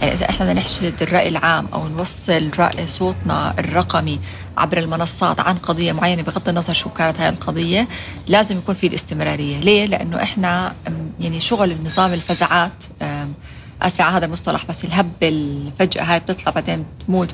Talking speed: 150 wpm